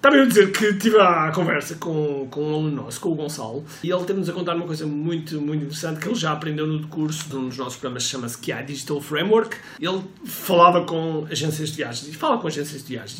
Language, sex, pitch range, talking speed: Portuguese, male, 145-180 Hz, 240 wpm